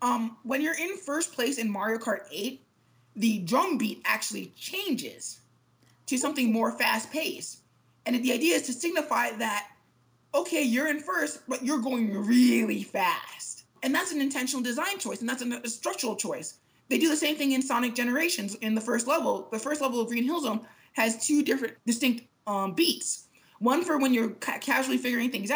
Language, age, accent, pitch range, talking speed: English, 20-39, American, 220-285 Hz, 185 wpm